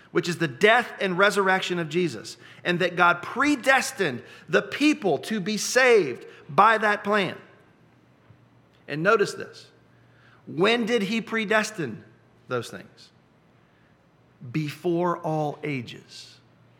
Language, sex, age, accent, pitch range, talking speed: English, male, 40-59, American, 165-230 Hz, 115 wpm